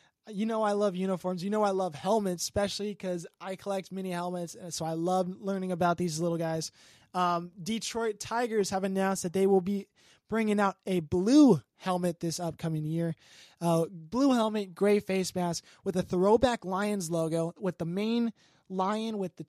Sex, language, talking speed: male, English, 180 wpm